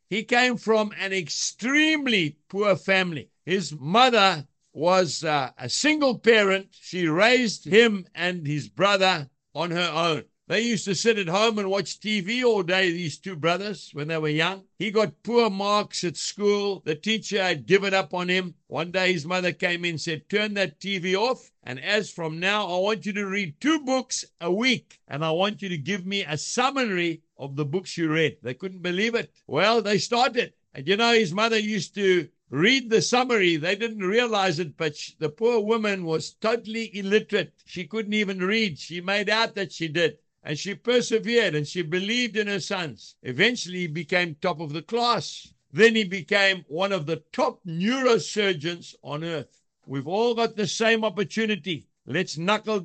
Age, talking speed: 60-79, 185 wpm